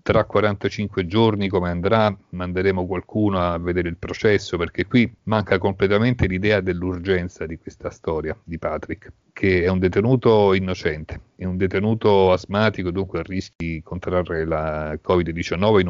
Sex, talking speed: male, 145 wpm